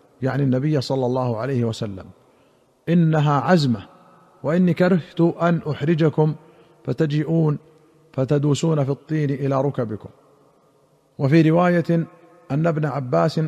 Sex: male